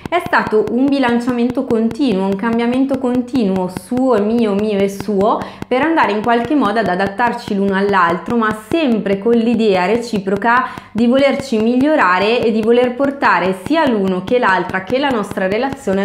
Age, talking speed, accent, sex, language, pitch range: 20-39, 160 wpm, native, female, Italian, 185-250 Hz